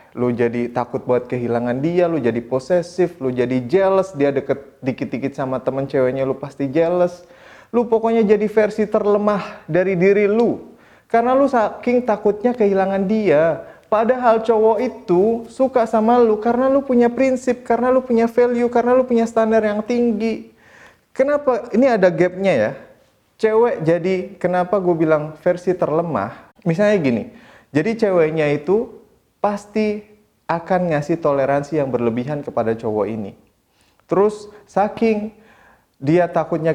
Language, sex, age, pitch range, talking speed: Indonesian, male, 30-49, 145-215 Hz, 140 wpm